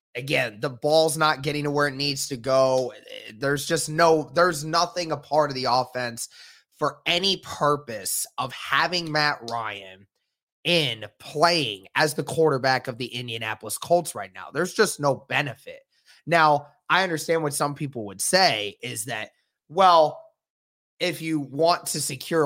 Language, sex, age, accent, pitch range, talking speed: English, male, 20-39, American, 115-155 Hz, 160 wpm